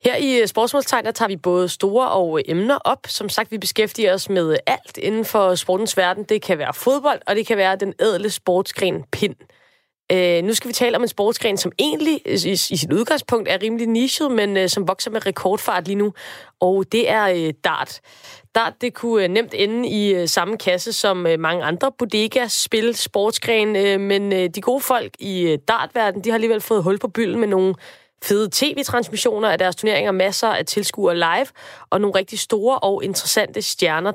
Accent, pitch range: native, 185-225 Hz